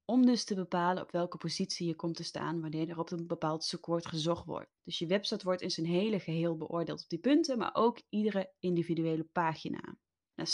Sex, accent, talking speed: female, Dutch, 210 wpm